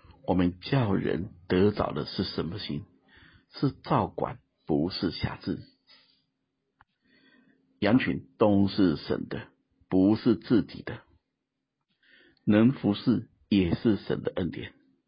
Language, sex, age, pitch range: Chinese, male, 50-69, 90-115 Hz